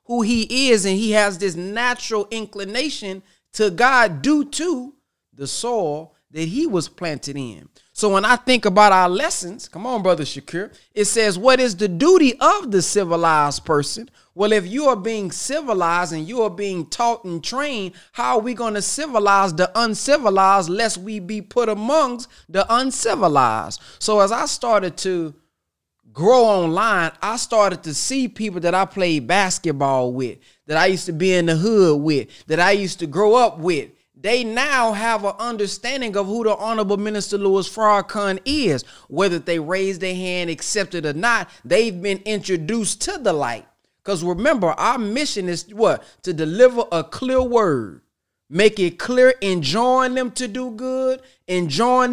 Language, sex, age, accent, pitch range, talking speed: English, male, 30-49, American, 180-240 Hz, 170 wpm